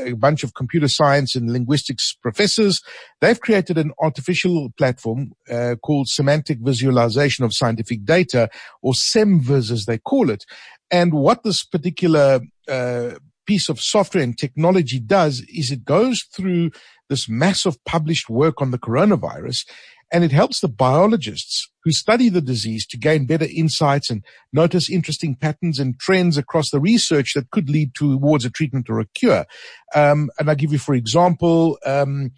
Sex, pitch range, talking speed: male, 130-165 Hz, 160 wpm